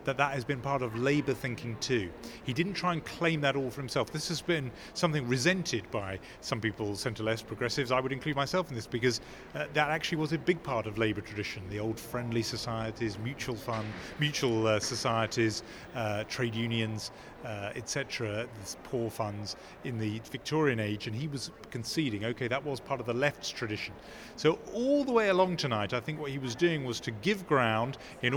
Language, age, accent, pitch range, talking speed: English, 30-49, British, 110-140 Hz, 200 wpm